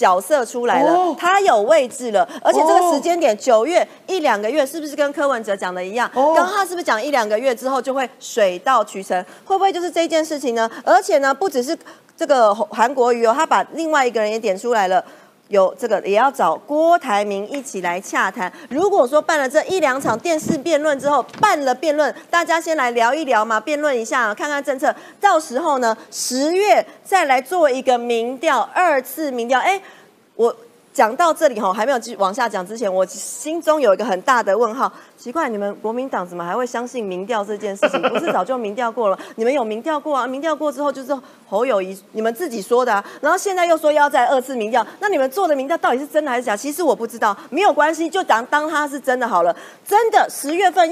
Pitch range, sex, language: 225-320 Hz, female, Chinese